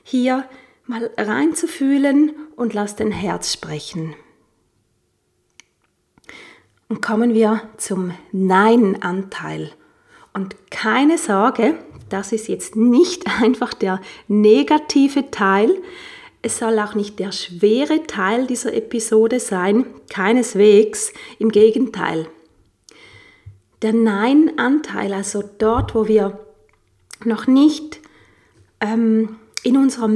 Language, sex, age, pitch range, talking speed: German, female, 30-49, 210-265 Hz, 95 wpm